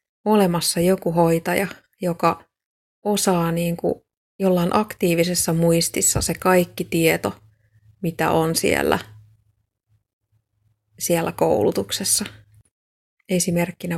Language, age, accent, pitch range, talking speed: Finnish, 20-39, native, 110-180 Hz, 75 wpm